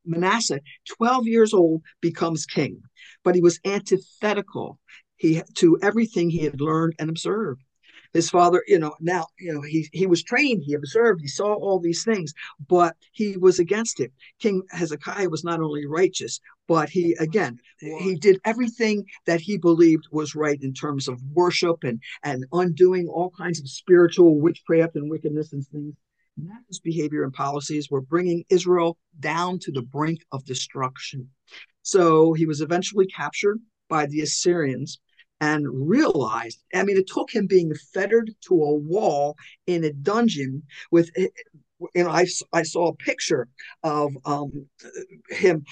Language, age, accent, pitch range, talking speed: English, 50-69, American, 155-195 Hz, 160 wpm